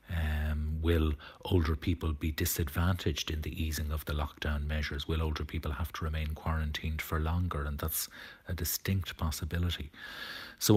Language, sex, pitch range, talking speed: English, male, 75-85 Hz, 155 wpm